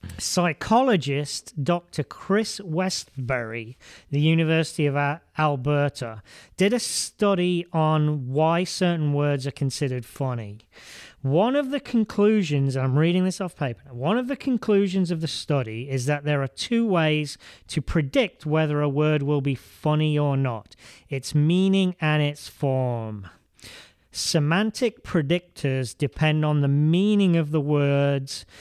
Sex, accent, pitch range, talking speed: male, British, 135-180 Hz, 135 wpm